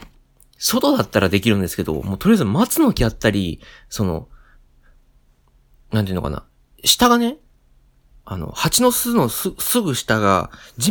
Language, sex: Japanese, male